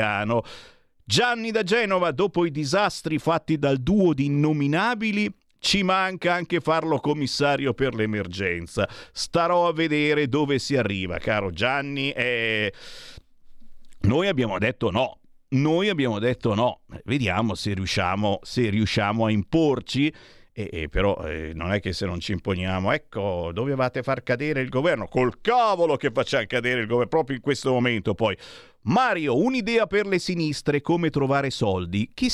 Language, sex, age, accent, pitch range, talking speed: Italian, male, 50-69, native, 105-155 Hz, 145 wpm